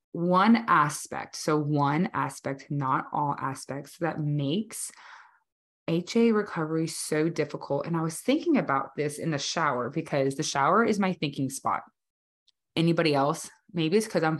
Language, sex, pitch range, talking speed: English, female, 145-190 Hz, 150 wpm